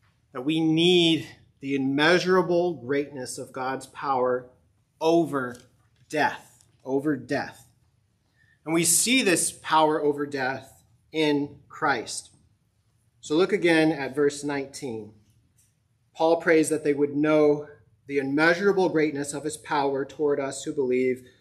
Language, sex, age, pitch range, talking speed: English, male, 30-49, 120-155 Hz, 120 wpm